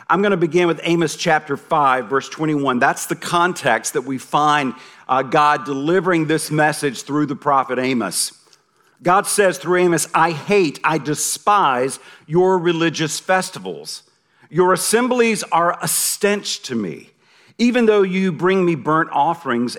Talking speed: 150 wpm